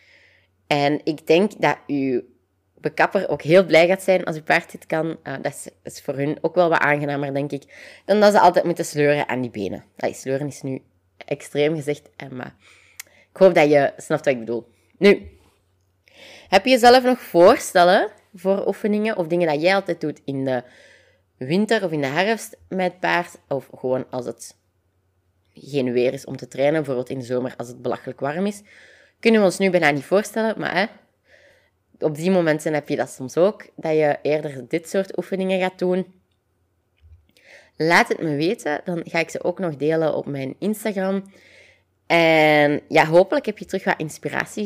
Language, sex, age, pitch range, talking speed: Dutch, female, 20-39, 135-185 Hz, 185 wpm